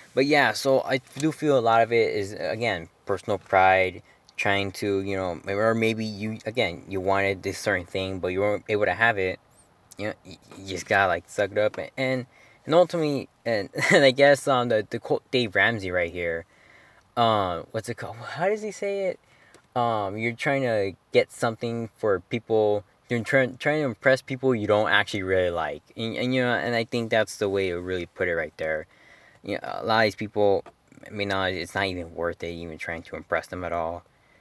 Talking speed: 215 wpm